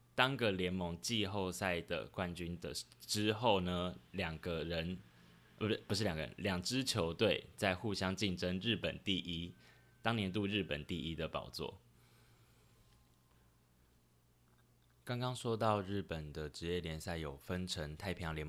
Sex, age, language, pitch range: male, 10-29, Chinese, 80-100 Hz